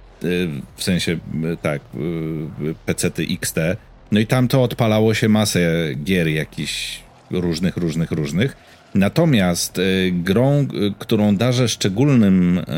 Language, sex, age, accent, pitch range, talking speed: Polish, male, 40-59, native, 90-115 Hz, 100 wpm